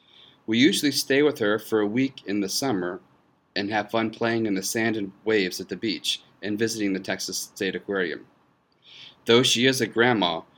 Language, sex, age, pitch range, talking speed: English, male, 40-59, 100-125 Hz, 195 wpm